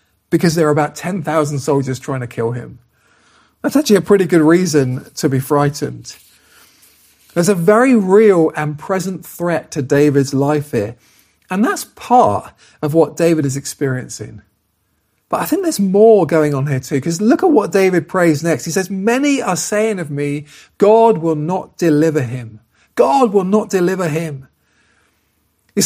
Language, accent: English, British